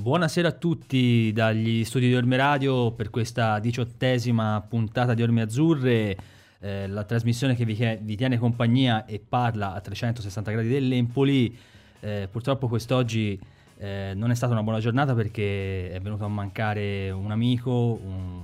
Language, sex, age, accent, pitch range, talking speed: Italian, male, 30-49, native, 100-120 Hz, 155 wpm